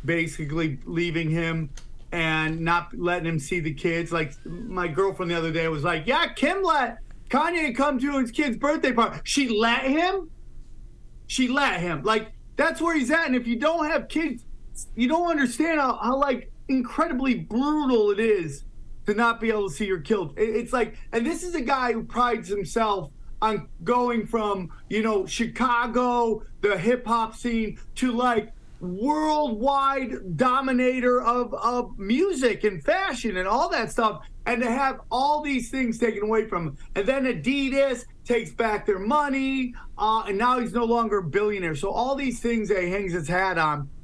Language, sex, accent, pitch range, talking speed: English, male, American, 195-260 Hz, 175 wpm